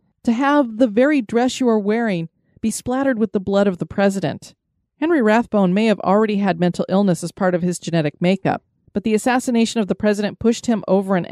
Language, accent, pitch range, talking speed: English, American, 185-245 Hz, 210 wpm